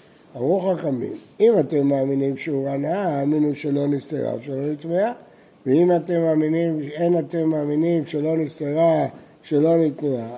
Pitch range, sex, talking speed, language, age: 145-180 Hz, male, 125 wpm, Hebrew, 60-79